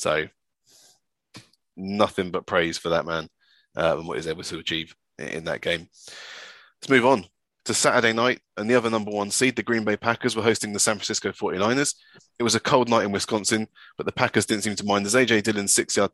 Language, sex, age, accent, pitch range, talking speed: English, male, 20-39, British, 95-120 Hz, 210 wpm